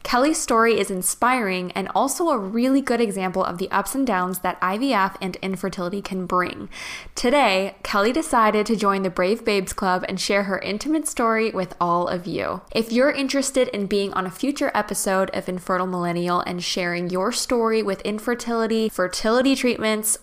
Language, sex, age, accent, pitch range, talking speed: English, female, 10-29, American, 195-250 Hz, 175 wpm